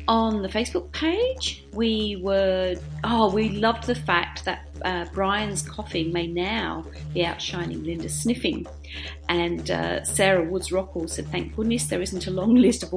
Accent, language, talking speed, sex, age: British, English, 160 wpm, female, 40-59